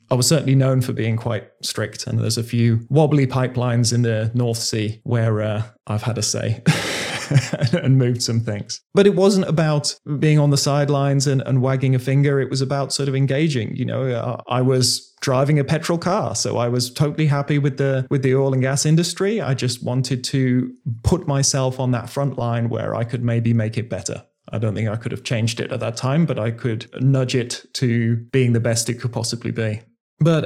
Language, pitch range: English, 115-140 Hz